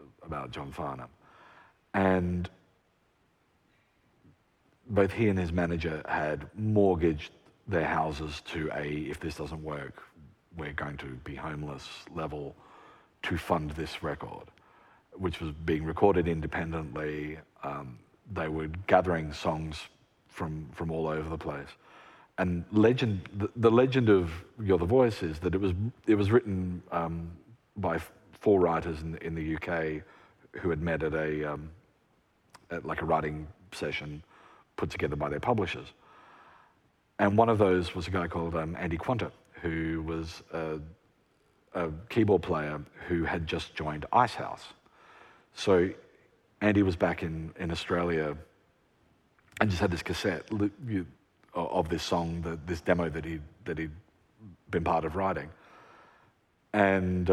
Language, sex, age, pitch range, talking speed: English, male, 40-59, 80-95 Hz, 145 wpm